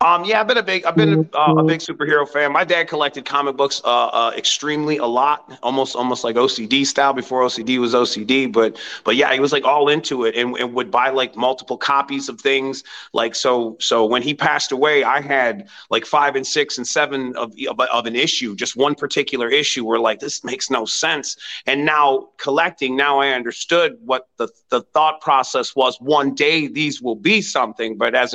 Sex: male